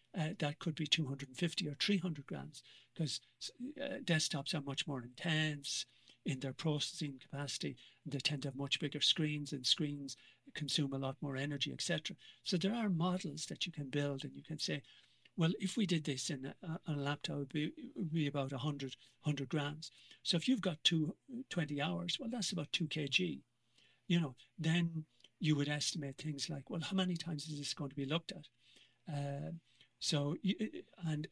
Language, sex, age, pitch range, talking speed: English, male, 60-79, 140-170 Hz, 185 wpm